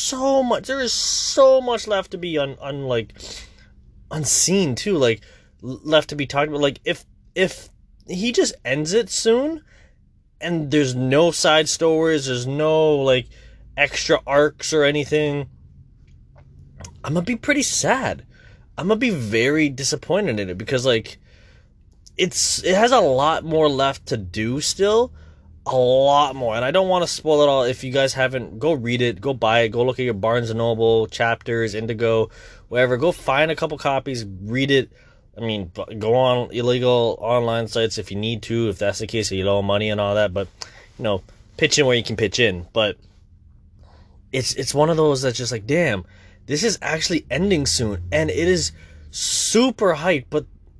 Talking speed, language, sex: 185 wpm, English, male